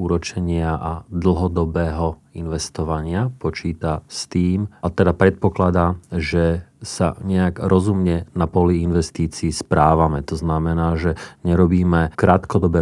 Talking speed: 105 wpm